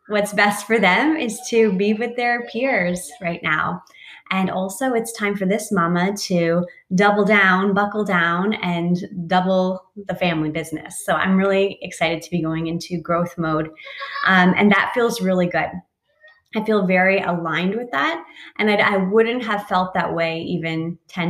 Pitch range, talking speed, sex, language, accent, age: 175-230 Hz, 170 wpm, female, English, American, 20-39